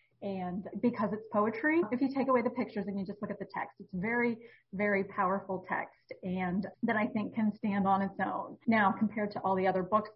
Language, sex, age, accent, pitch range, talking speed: English, female, 30-49, American, 195-245 Hz, 225 wpm